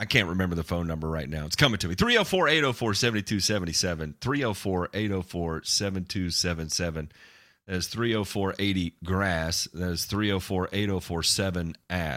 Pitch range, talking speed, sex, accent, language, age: 85-105 Hz, 110 wpm, male, American, English, 30-49